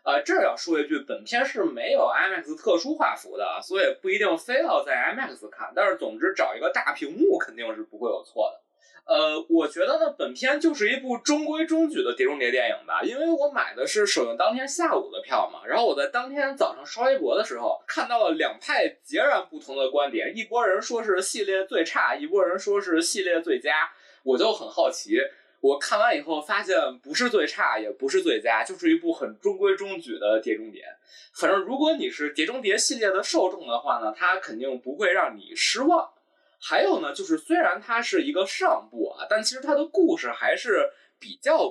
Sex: male